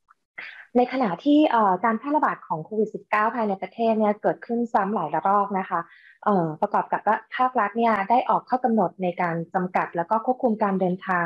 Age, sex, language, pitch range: 20-39, female, Thai, 180-235 Hz